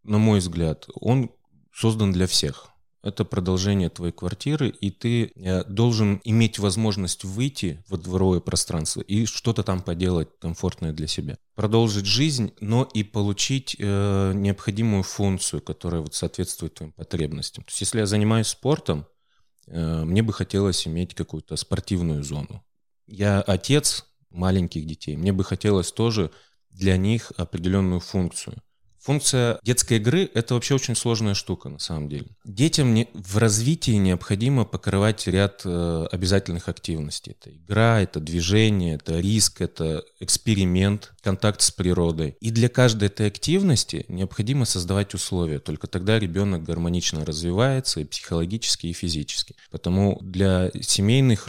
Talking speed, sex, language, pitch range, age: 135 wpm, male, Russian, 85-110 Hz, 30-49